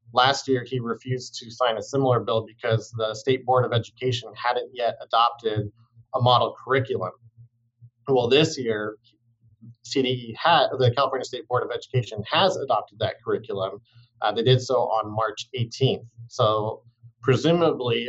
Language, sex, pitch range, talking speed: English, male, 110-125 Hz, 150 wpm